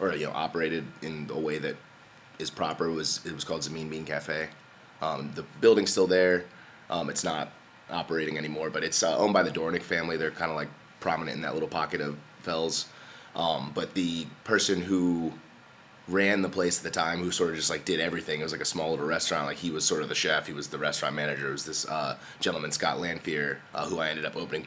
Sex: male